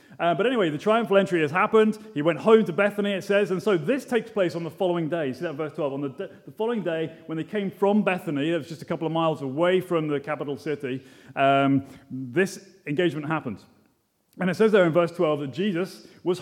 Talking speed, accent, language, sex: 235 wpm, British, English, male